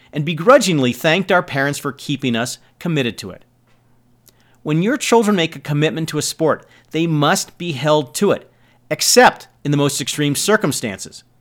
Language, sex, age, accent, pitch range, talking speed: English, male, 40-59, American, 125-175 Hz, 170 wpm